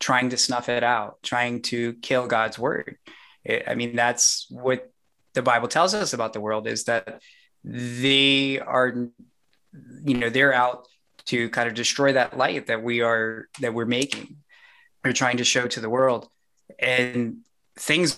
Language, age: English, 20-39